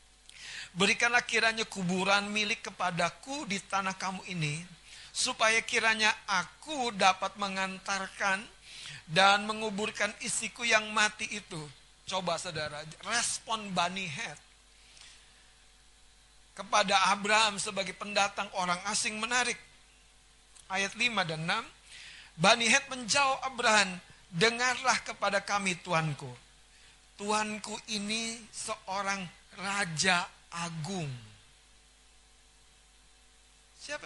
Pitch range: 180-225 Hz